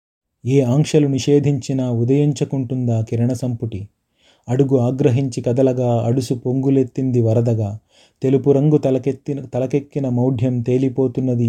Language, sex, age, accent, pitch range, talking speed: Telugu, male, 30-49, native, 120-140 Hz, 95 wpm